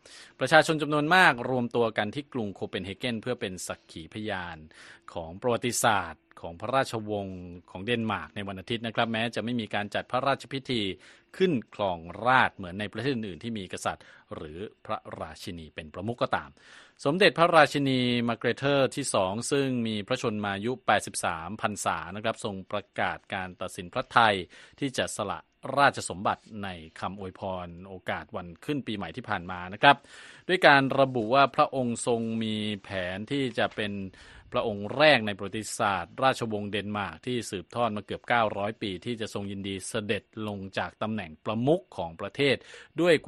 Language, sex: Thai, male